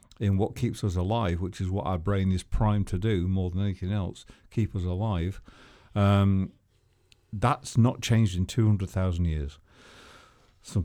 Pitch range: 95-120 Hz